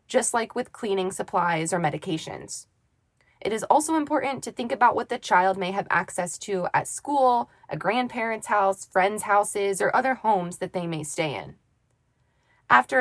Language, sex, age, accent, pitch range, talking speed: English, female, 20-39, American, 180-255 Hz, 170 wpm